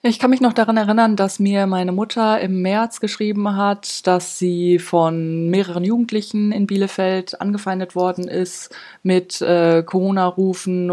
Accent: German